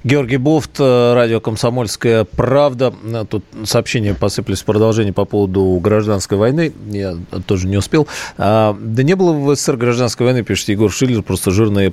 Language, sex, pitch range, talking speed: Russian, male, 95-120 Hz, 155 wpm